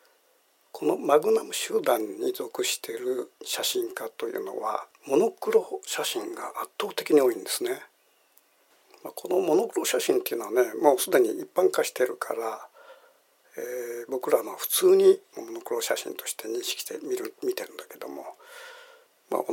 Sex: male